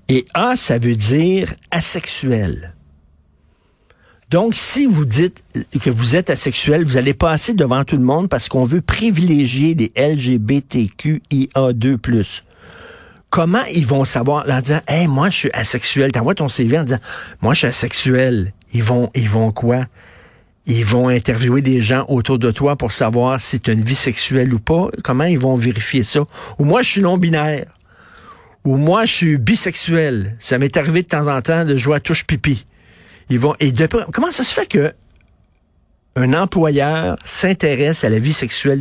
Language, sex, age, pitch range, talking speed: French, male, 50-69, 115-155 Hz, 185 wpm